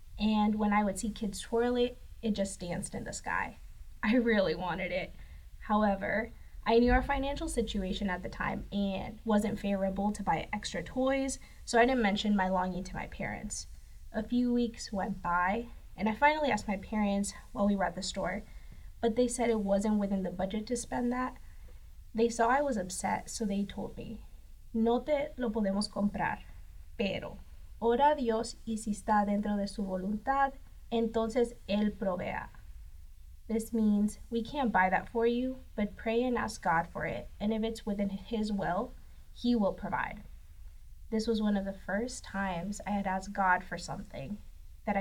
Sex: female